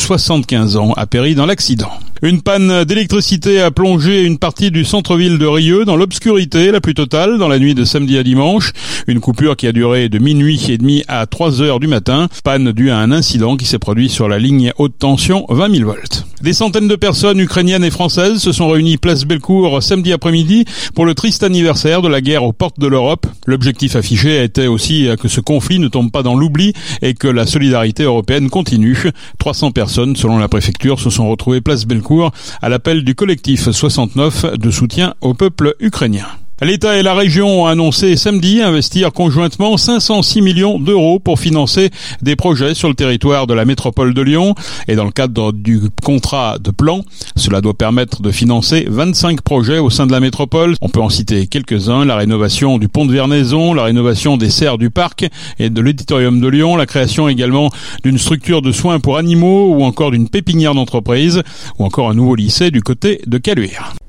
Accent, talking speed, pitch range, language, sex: French, 200 wpm, 125-175 Hz, French, male